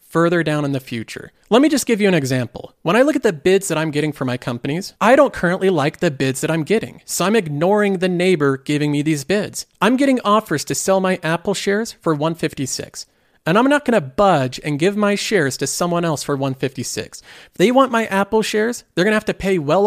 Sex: male